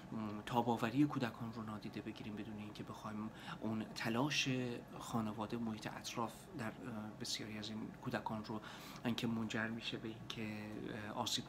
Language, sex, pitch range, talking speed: English, male, 110-125 Hz, 130 wpm